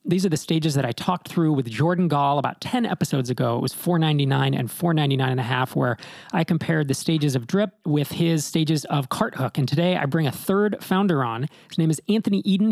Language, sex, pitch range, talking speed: English, male, 140-175 Hz, 245 wpm